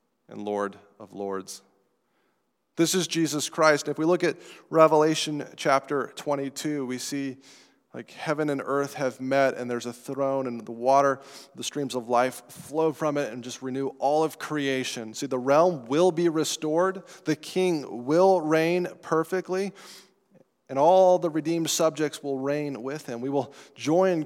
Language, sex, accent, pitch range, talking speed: English, male, American, 130-165 Hz, 165 wpm